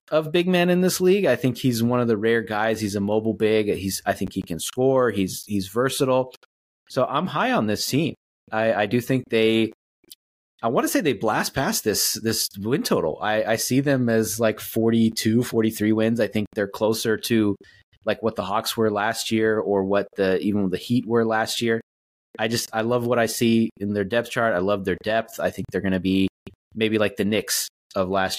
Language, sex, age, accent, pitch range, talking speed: English, male, 30-49, American, 100-115 Hz, 225 wpm